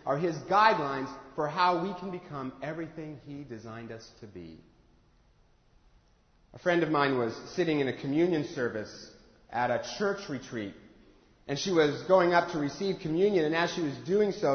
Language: English